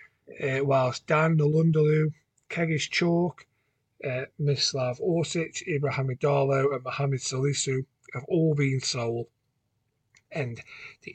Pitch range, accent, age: 125-150 Hz, British, 40-59